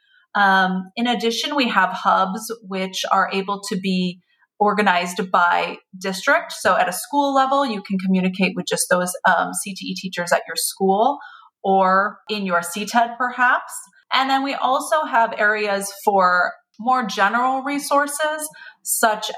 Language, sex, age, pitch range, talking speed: English, female, 30-49, 190-240 Hz, 145 wpm